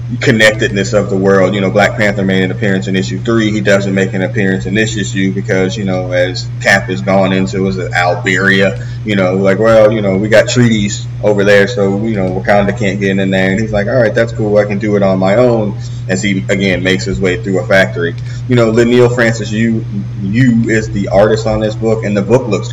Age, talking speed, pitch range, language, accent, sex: 30-49, 250 wpm, 100-120 Hz, English, American, male